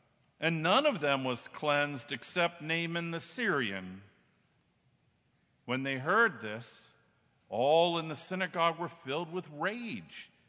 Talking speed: 125 wpm